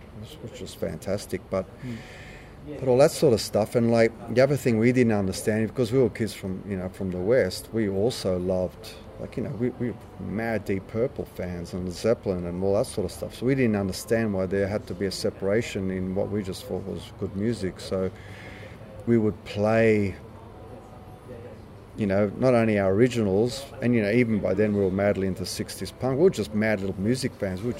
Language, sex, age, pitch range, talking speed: English, male, 30-49, 95-115 Hz, 210 wpm